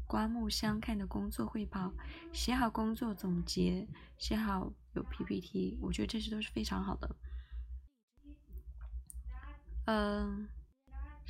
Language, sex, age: Chinese, female, 20-39